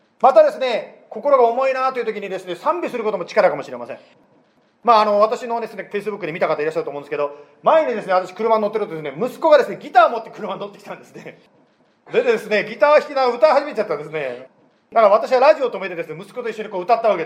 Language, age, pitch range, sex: Japanese, 40-59, 210-290 Hz, male